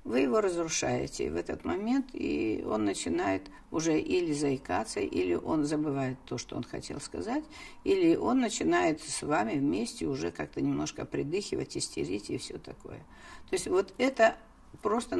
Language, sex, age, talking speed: Russian, female, 50-69, 155 wpm